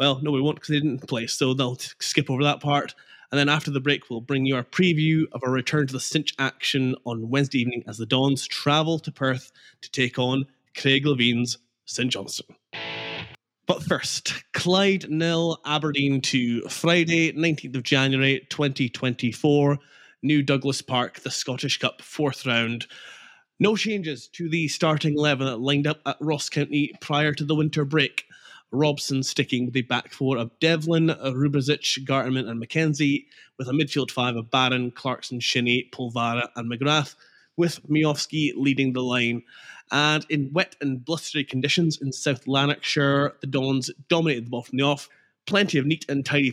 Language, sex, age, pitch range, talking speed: English, male, 20-39, 130-150 Hz, 170 wpm